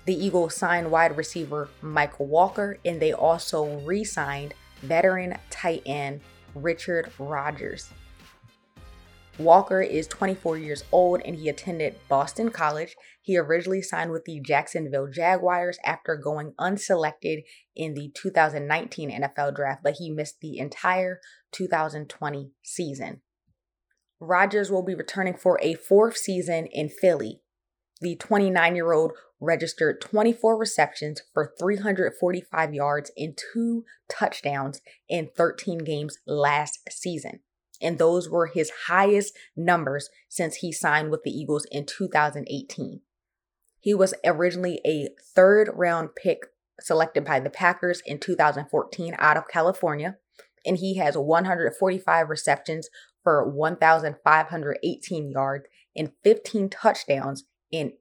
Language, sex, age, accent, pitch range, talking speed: English, female, 20-39, American, 150-180 Hz, 120 wpm